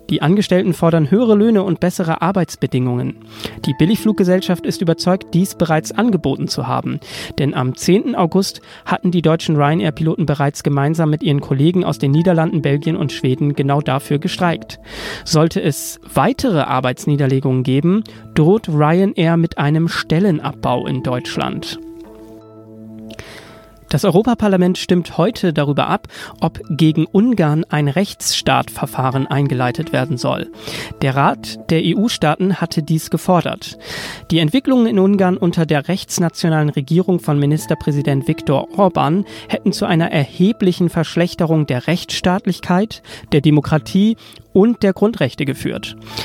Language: German